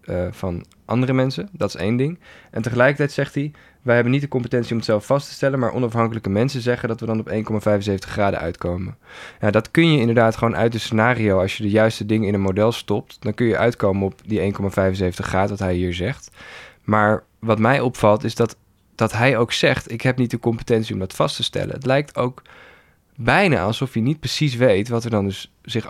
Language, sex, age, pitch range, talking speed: Dutch, male, 20-39, 100-125 Hz, 225 wpm